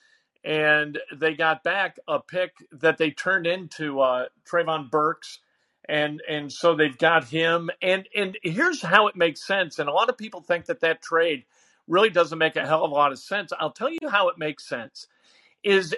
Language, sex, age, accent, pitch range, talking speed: English, male, 50-69, American, 155-195 Hz, 200 wpm